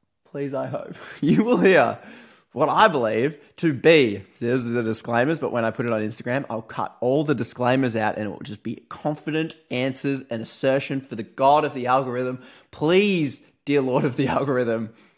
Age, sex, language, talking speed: 20-39, male, English, 190 wpm